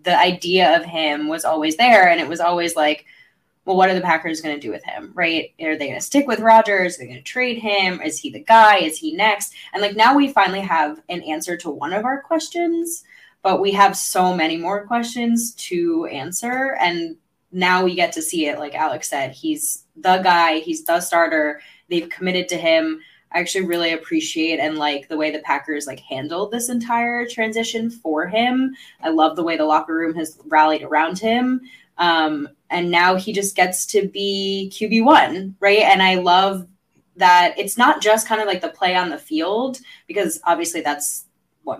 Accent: American